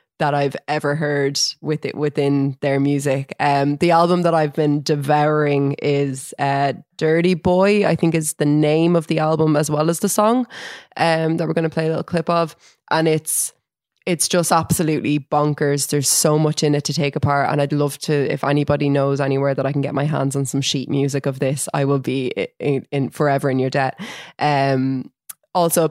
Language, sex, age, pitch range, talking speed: English, female, 20-39, 140-160 Hz, 205 wpm